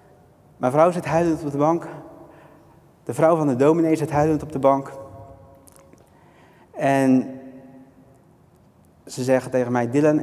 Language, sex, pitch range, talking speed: Dutch, male, 130-160 Hz, 135 wpm